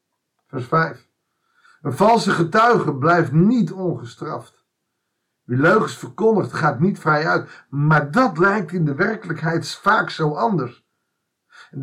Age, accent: 50-69, Dutch